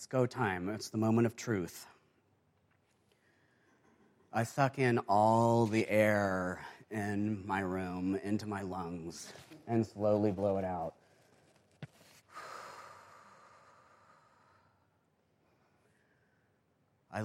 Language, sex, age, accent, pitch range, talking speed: English, male, 40-59, American, 95-120 Hz, 90 wpm